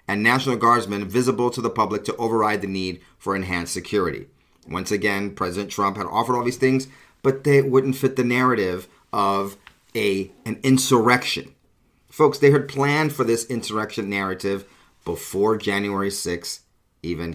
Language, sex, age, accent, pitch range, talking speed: English, male, 40-59, American, 100-130 Hz, 155 wpm